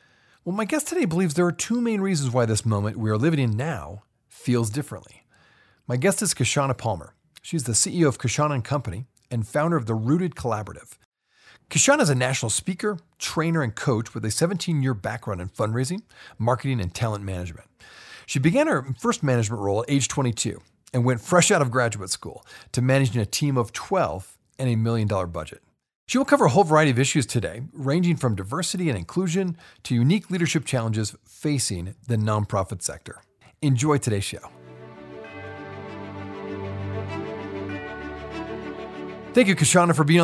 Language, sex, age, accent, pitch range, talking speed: English, male, 40-59, American, 105-160 Hz, 165 wpm